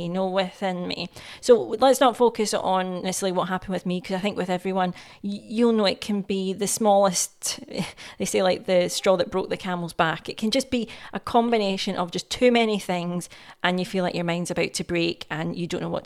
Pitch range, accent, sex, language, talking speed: 180-205 Hz, British, female, English, 225 wpm